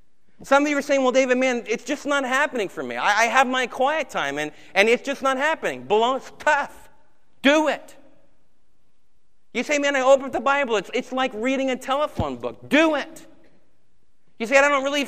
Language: English